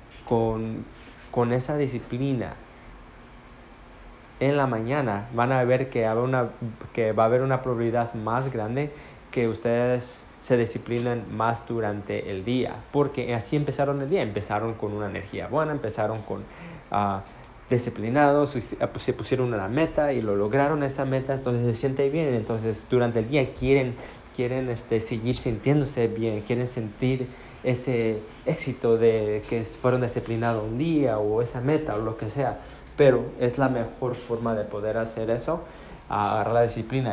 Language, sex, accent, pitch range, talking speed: Spanish, male, Mexican, 110-130 Hz, 155 wpm